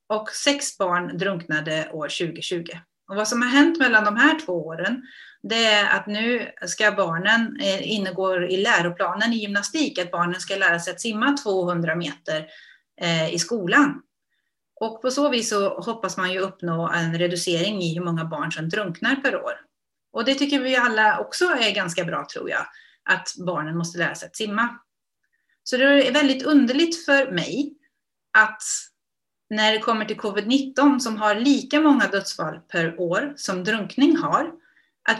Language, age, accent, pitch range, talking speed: Swedish, 30-49, native, 185-265 Hz, 170 wpm